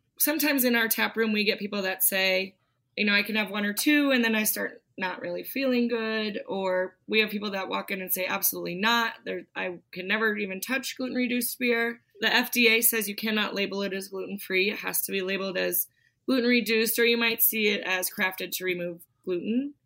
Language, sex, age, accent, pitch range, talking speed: English, female, 20-39, American, 190-235 Hz, 210 wpm